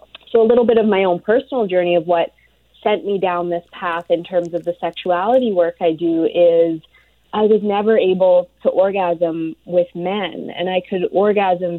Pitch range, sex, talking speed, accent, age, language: 165-185 Hz, female, 190 wpm, American, 20-39, English